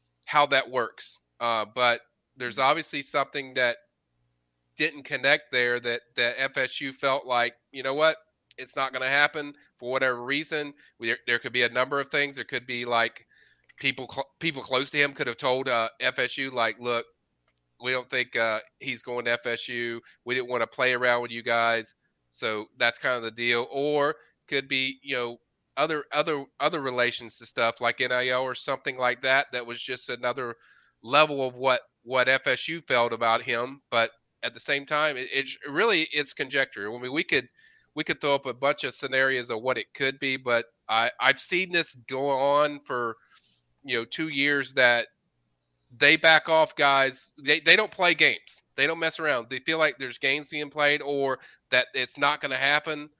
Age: 30-49